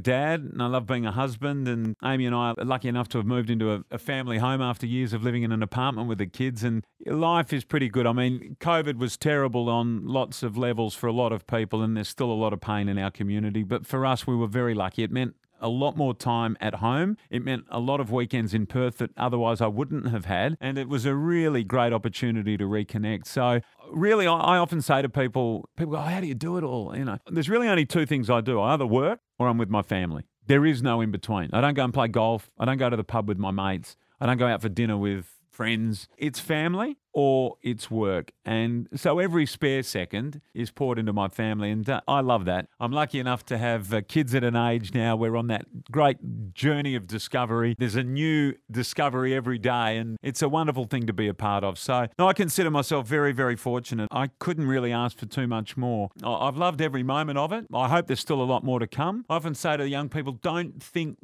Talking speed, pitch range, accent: 245 wpm, 115-140 Hz, Australian